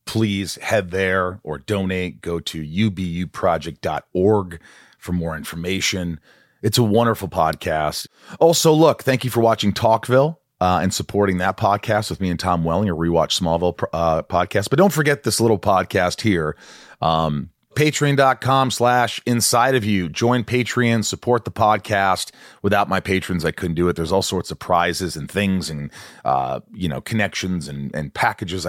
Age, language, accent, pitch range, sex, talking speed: 30-49, English, American, 85-110 Hz, male, 160 wpm